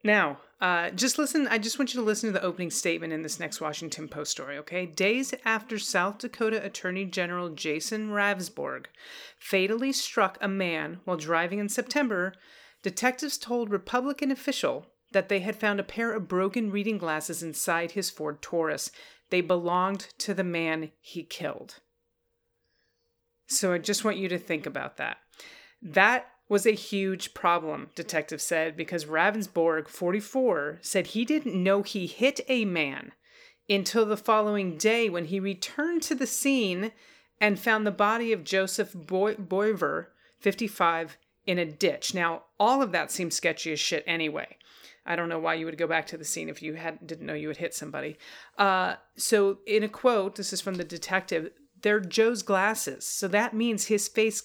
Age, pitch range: 30-49, 170-220 Hz